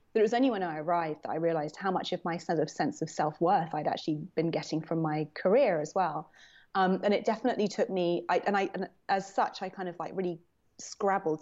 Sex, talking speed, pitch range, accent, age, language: female, 245 wpm, 160-195 Hz, British, 30-49, English